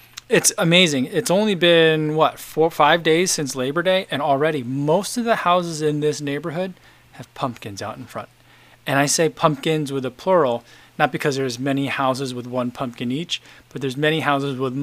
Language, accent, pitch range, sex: English, American, 130-165 Hz, male